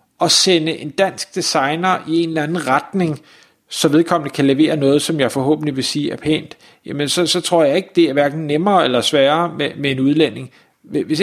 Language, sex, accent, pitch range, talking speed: Danish, male, native, 145-190 Hz, 210 wpm